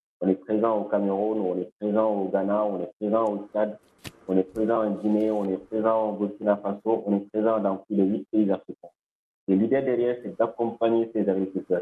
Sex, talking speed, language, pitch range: male, 210 wpm, French, 100-110 Hz